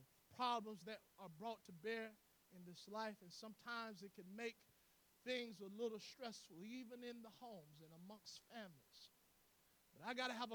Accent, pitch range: American, 195-245 Hz